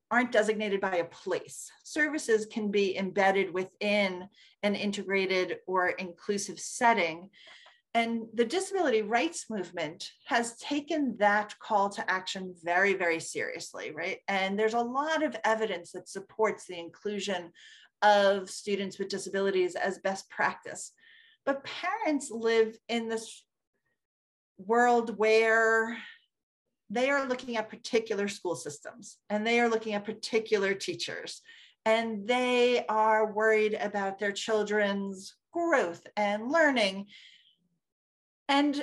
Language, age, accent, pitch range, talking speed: English, 40-59, American, 200-250 Hz, 120 wpm